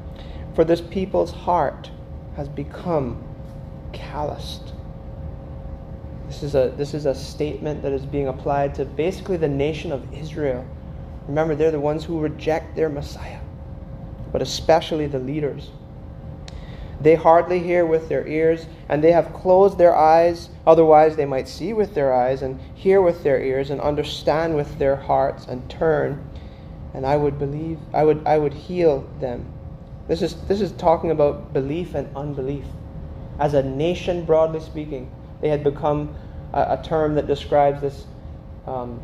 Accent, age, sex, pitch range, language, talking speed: American, 30-49, male, 135-160 Hz, English, 155 wpm